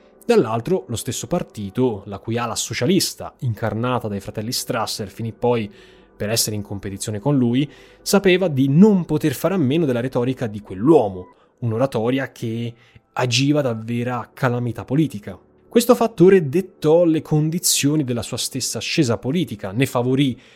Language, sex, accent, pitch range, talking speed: Italian, male, native, 110-155 Hz, 145 wpm